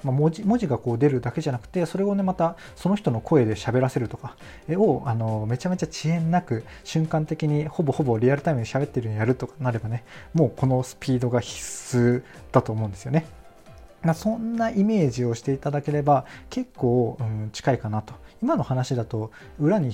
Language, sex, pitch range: Japanese, male, 120-165 Hz